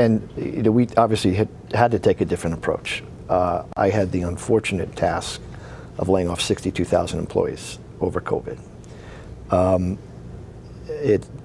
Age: 50-69